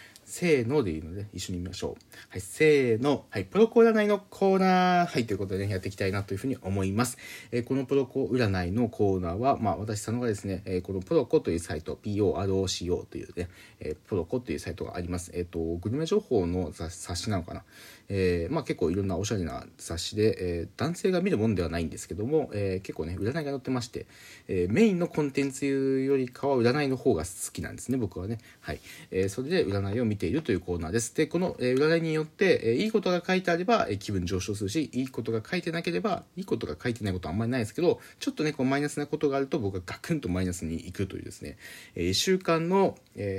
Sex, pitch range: male, 95-155 Hz